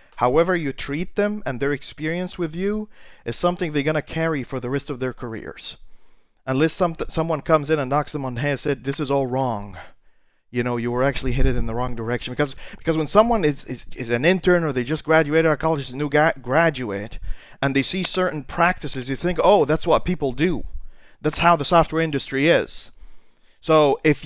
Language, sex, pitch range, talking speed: English, male, 130-170 Hz, 215 wpm